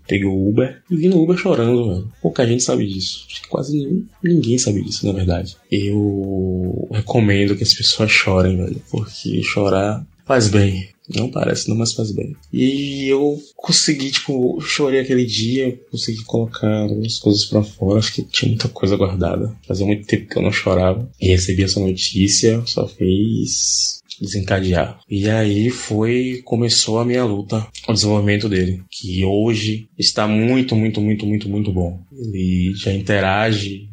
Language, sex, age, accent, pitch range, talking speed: Portuguese, male, 20-39, Brazilian, 95-115 Hz, 160 wpm